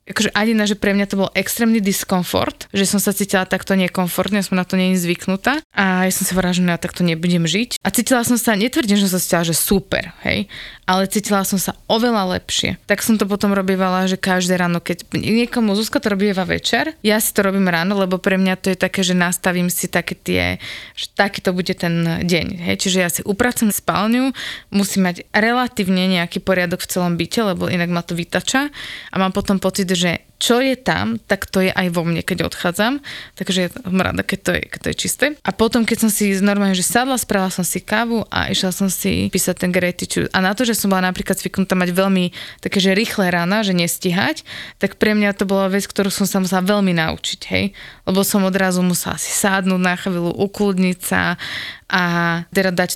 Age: 20-39